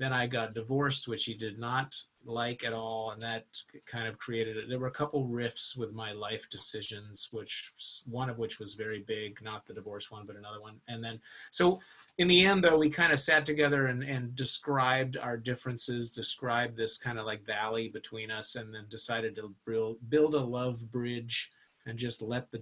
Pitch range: 110-140 Hz